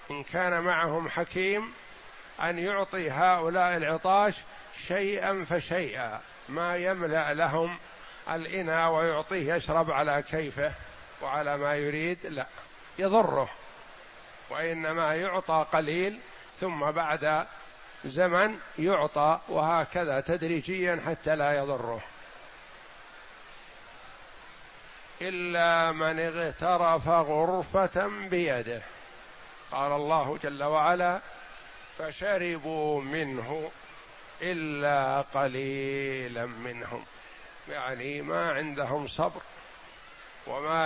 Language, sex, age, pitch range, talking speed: Arabic, male, 50-69, 145-175 Hz, 80 wpm